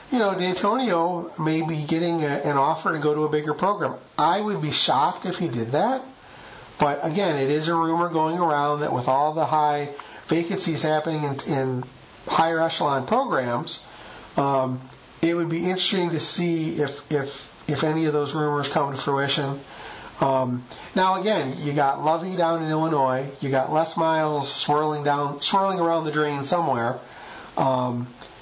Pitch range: 140-170 Hz